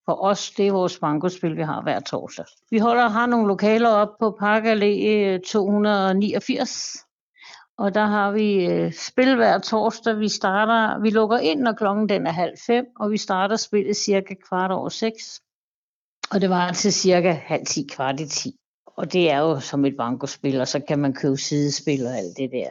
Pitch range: 170-215 Hz